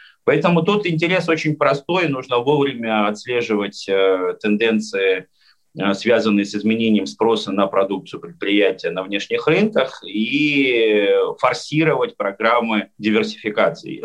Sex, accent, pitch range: male, native, 105-150 Hz